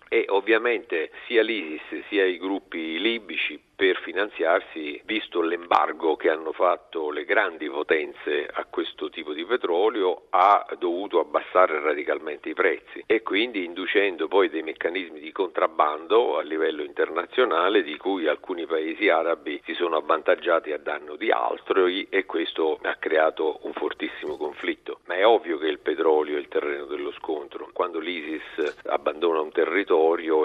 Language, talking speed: Italian, 140 wpm